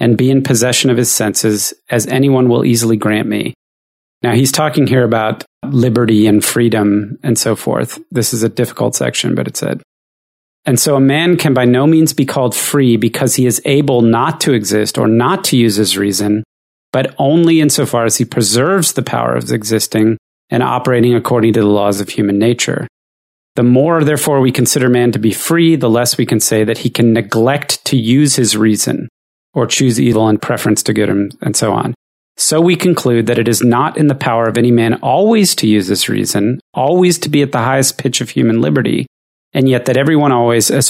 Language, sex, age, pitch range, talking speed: English, male, 30-49, 110-135 Hz, 210 wpm